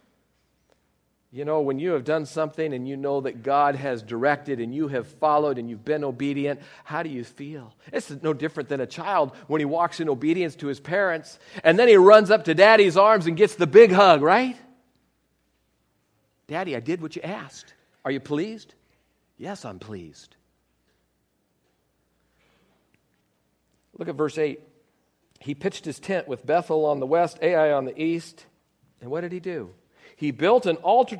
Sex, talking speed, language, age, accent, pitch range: male, 175 wpm, English, 50-69, American, 130-175 Hz